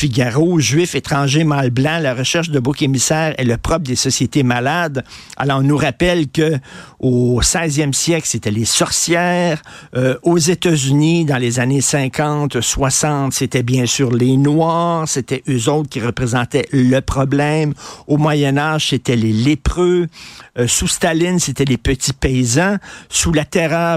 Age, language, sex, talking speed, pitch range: 50-69, French, male, 150 wpm, 125-155 Hz